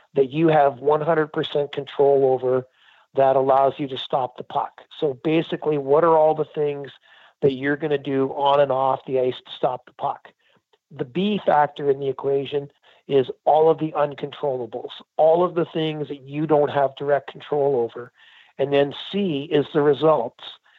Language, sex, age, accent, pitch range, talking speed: English, male, 50-69, American, 140-160 Hz, 180 wpm